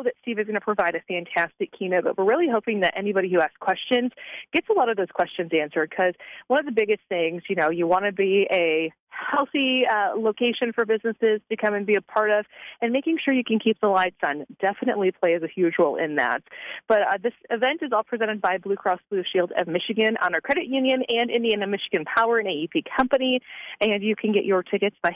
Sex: female